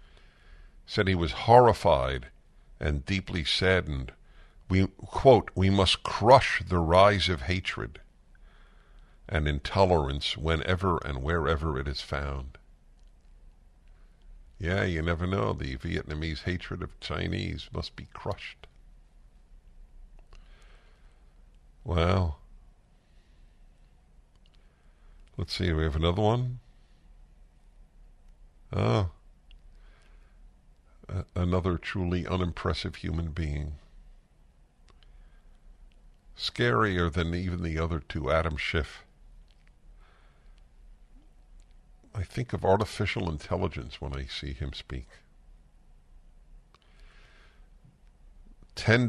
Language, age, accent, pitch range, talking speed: English, 60-79, American, 70-90 Hz, 85 wpm